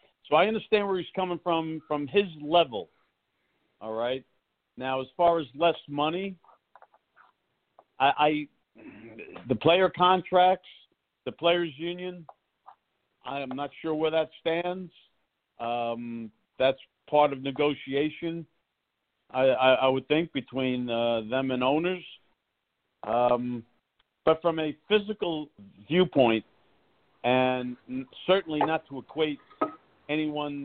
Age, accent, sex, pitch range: 50-69, American, male, 120-160 Hz